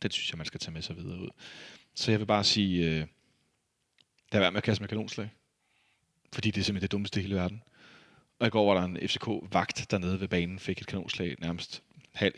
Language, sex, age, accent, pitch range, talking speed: Danish, male, 30-49, native, 90-105 Hz, 230 wpm